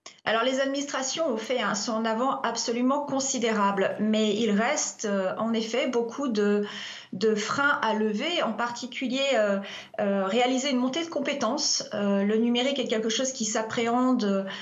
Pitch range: 220-265 Hz